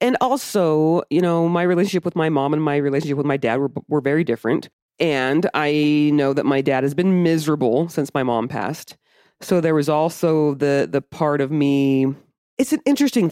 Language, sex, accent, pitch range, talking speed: English, female, American, 140-180 Hz, 200 wpm